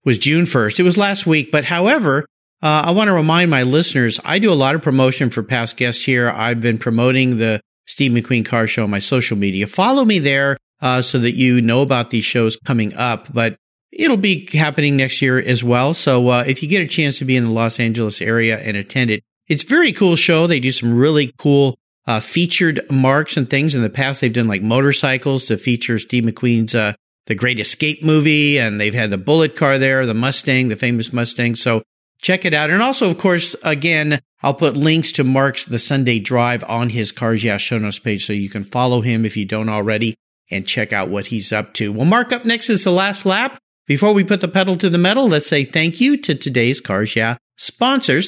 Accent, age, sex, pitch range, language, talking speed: American, 50-69, male, 115-165 Hz, English, 230 wpm